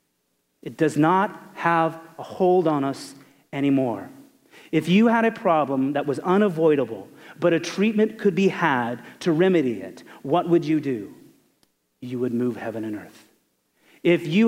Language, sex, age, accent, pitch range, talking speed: English, male, 40-59, American, 150-195 Hz, 155 wpm